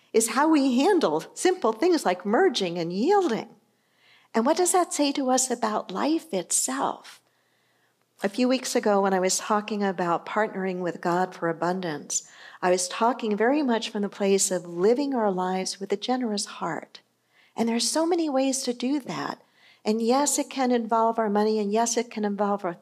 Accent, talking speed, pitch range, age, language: American, 190 wpm, 215-280 Hz, 50-69, English